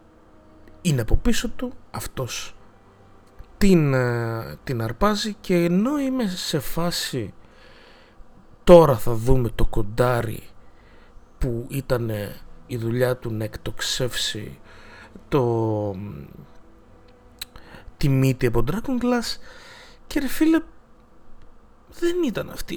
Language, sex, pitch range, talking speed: Greek, male, 120-200 Hz, 105 wpm